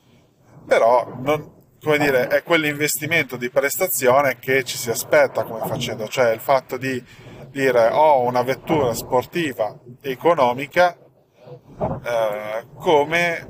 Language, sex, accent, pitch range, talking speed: Italian, male, native, 120-150 Hz, 115 wpm